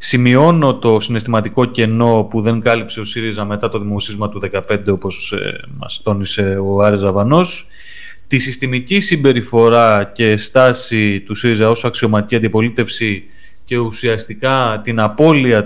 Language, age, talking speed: Greek, 30-49, 130 wpm